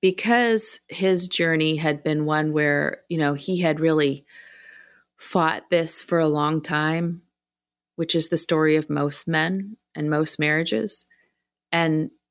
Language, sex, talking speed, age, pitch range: English, female, 140 wpm, 30-49, 150-175 Hz